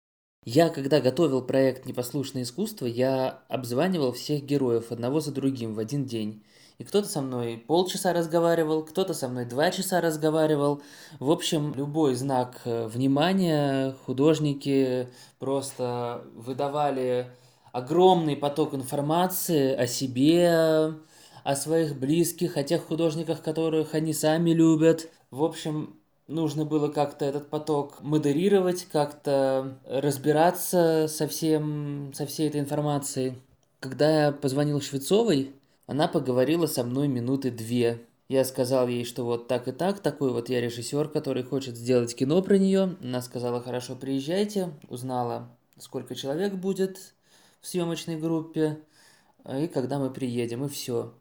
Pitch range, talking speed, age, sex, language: 130-160 Hz, 130 wpm, 20-39, male, Russian